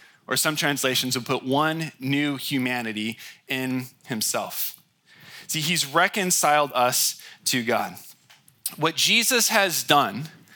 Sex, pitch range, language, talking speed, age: male, 140-180 Hz, English, 115 wpm, 20-39